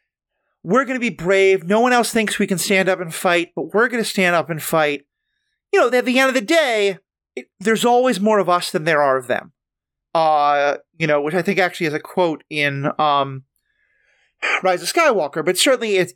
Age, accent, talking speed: 30-49, American, 220 wpm